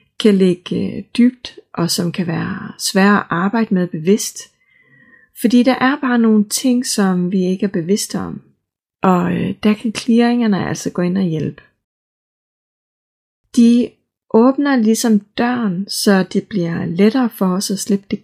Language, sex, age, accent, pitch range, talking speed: Danish, female, 30-49, native, 185-220 Hz, 150 wpm